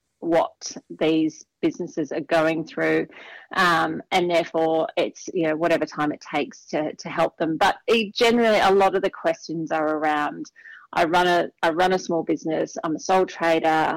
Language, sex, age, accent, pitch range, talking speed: English, female, 30-49, Australian, 160-185 Hz, 175 wpm